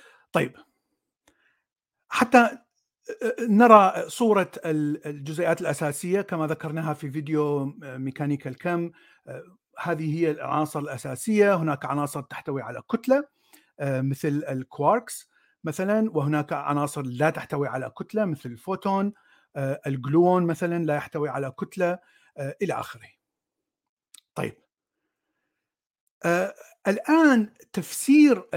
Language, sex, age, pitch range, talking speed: Arabic, male, 50-69, 145-195 Hz, 90 wpm